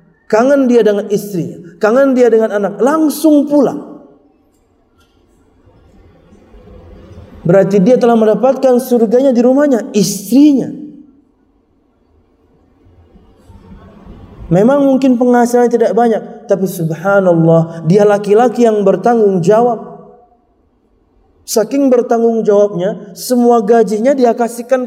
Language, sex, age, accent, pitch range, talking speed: Indonesian, male, 30-49, native, 175-250 Hz, 90 wpm